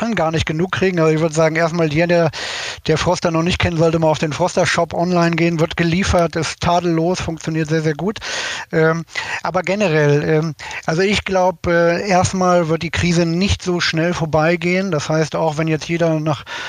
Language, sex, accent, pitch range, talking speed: German, male, German, 155-175 Hz, 190 wpm